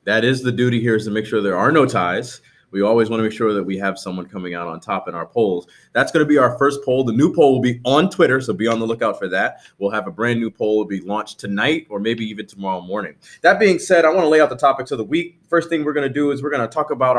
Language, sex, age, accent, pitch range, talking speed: English, male, 30-49, American, 115-145 Hz, 320 wpm